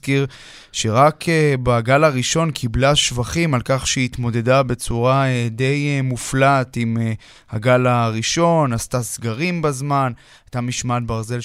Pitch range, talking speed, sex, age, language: 125-145 Hz, 105 wpm, male, 20-39, Hebrew